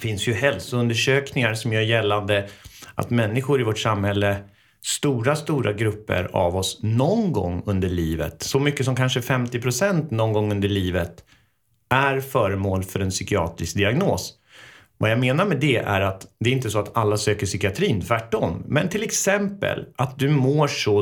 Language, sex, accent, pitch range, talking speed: Swedish, male, native, 100-130 Hz, 170 wpm